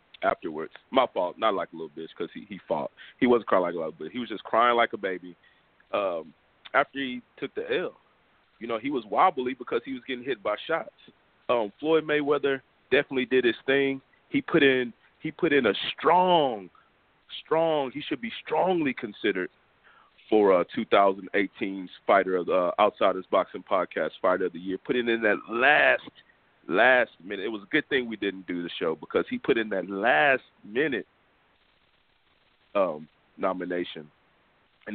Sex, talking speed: male, 180 wpm